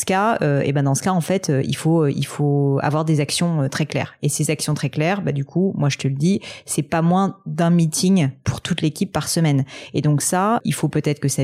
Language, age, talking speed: French, 30-49, 275 wpm